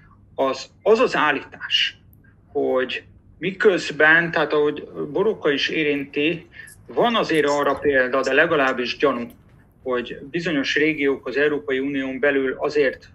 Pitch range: 135-175 Hz